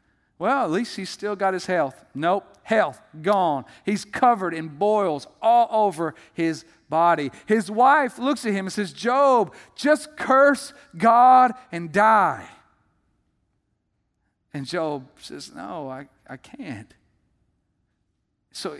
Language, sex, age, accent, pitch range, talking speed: English, male, 50-69, American, 165-235 Hz, 130 wpm